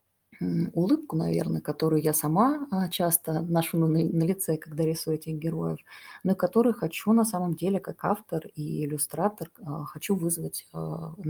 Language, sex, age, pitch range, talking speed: Russian, female, 20-39, 140-170 Hz, 135 wpm